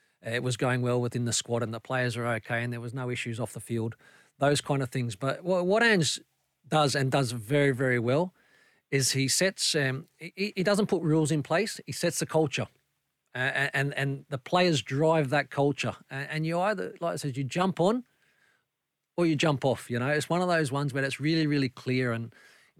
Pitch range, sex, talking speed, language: 130-165 Hz, male, 220 wpm, English